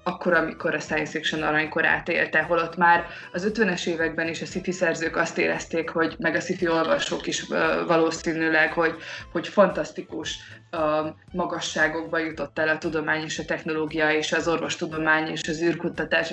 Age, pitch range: 20-39, 160-185 Hz